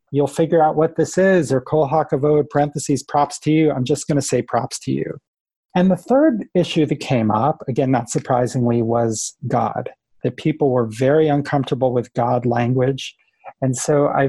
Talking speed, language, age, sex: 180 wpm, English, 40-59, male